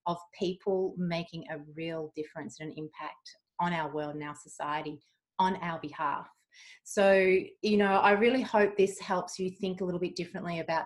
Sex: female